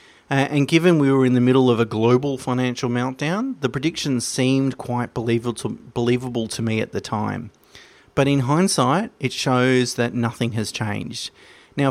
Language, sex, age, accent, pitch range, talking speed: English, male, 30-49, Australian, 110-130 Hz, 170 wpm